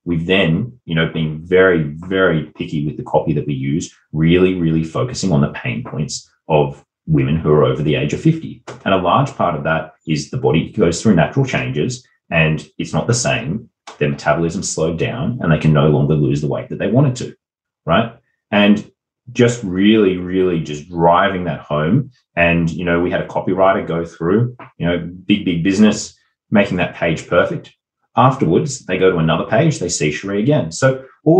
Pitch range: 80-120 Hz